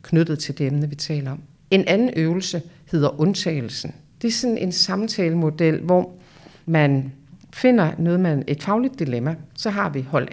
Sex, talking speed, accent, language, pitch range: female, 170 wpm, native, Danish, 150-185 Hz